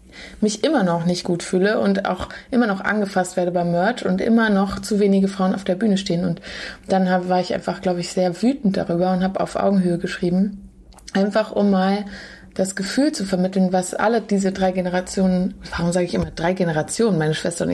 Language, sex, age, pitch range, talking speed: German, female, 20-39, 185-215 Hz, 205 wpm